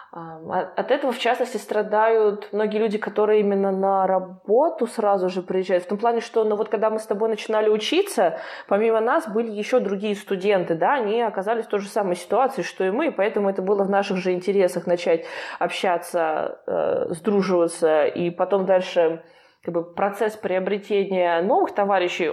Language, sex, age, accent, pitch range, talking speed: Russian, female, 20-39, native, 180-215 Hz, 170 wpm